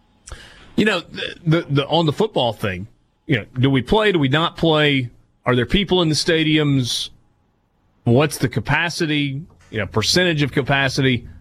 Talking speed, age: 170 wpm, 30-49